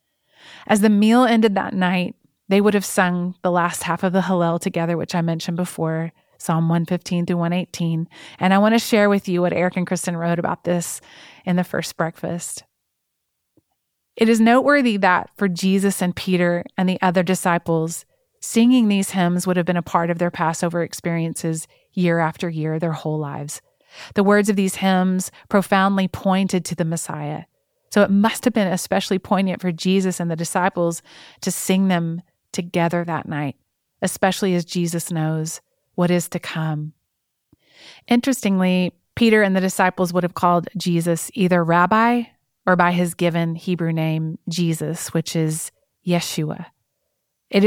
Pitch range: 170-190 Hz